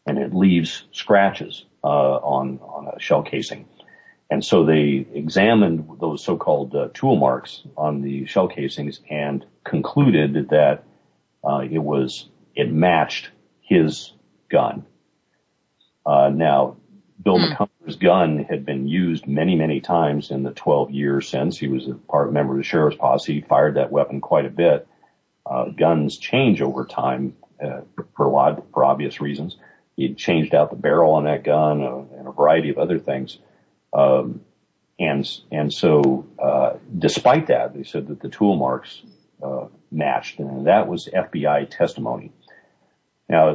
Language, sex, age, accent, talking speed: English, male, 50-69, American, 155 wpm